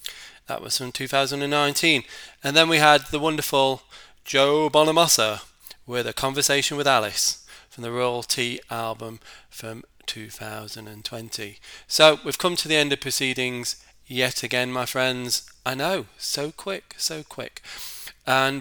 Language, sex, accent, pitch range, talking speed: English, male, British, 110-135 Hz, 140 wpm